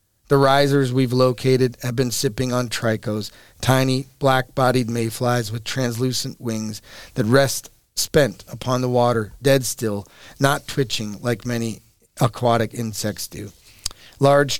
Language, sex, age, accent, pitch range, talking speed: English, male, 40-59, American, 110-135 Hz, 125 wpm